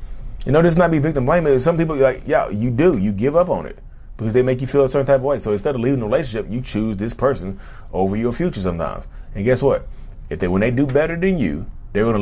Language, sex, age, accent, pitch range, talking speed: English, male, 30-49, American, 95-135 Hz, 275 wpm